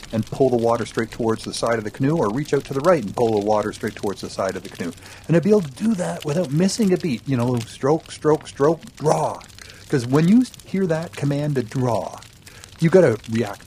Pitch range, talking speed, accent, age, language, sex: 110-160 Hz, 250 wpm, American, 50-69, English, male